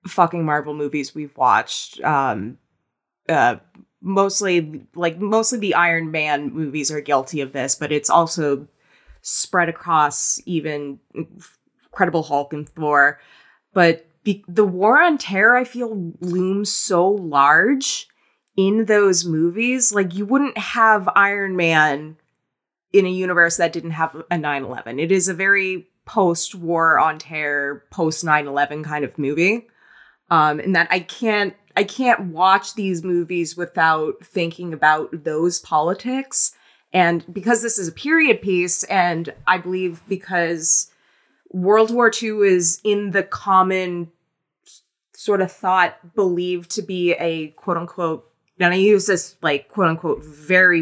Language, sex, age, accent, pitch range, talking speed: English, female, 20-39, American, 160-200 Hz, 145 wpm